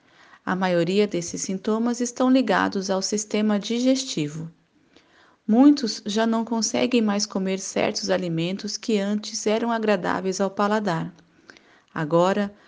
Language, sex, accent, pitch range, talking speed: Portuguese, female, Brazilian, 190-235 Hz, 115 wpm